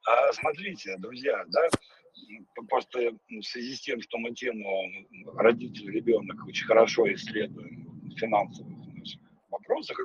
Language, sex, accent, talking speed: Russian, male, native, 120 wpm